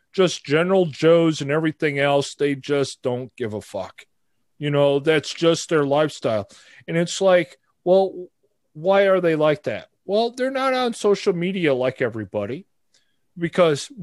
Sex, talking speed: male, 155 wpm